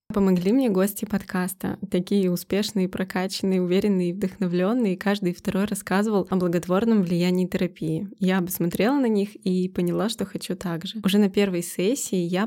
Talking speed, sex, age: 150 wpm, female, 20-39